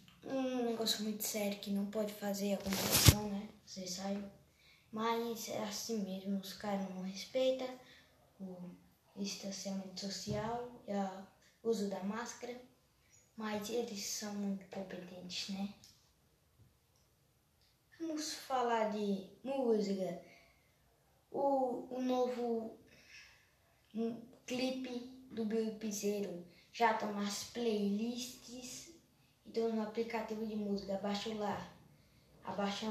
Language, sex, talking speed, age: Portuguese, female, 110 wpm, 20-39